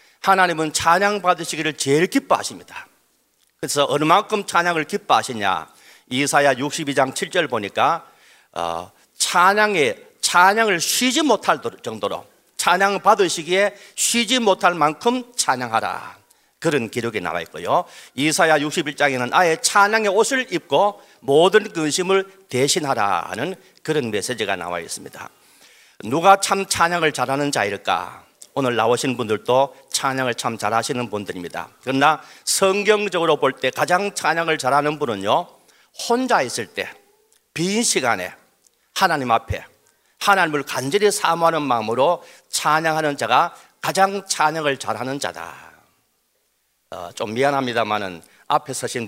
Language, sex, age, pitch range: Korean, male, 40-59, 135-195 Hz